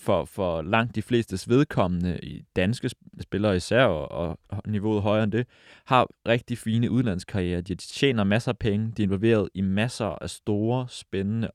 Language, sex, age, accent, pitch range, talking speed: Danish, male, 20-39, native, 95-120 Hz, 170 wpm